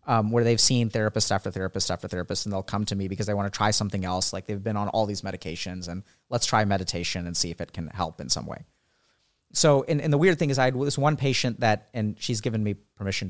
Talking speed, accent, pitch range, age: 265 wpm, American, 100-130 Hz, 30-49